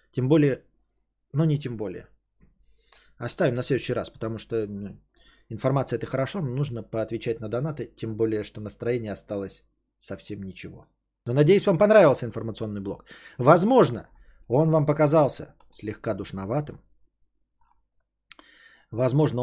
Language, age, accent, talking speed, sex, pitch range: Russian, 20-39, native, 125 wpm, male, 105-150 Hz